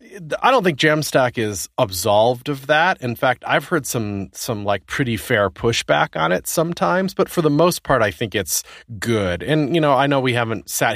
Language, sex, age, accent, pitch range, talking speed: English, male, 30-49, American, 95-125 Hz, 210 wpm